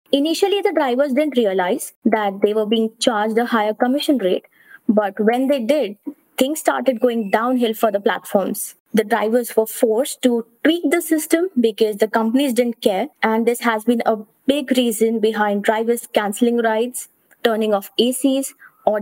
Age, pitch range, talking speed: 20-39, 225-285 Hz, 165 wpm